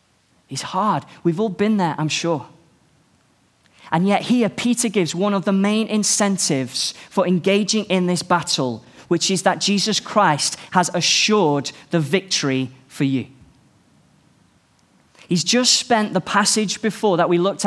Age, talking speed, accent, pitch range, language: 20-39, 145 wpm, British, 155-210 Hz, English